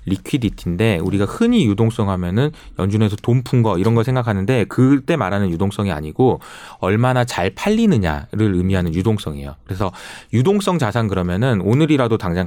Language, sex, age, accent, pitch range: Korean, male, 30-49, native, 95-145 Hz